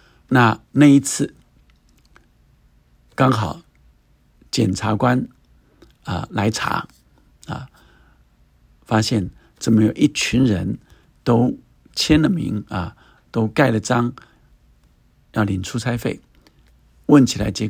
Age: 50-69